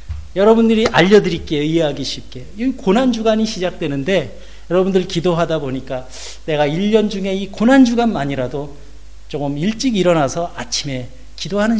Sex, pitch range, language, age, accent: male, 145-225 Hz, Korean, 40-59, native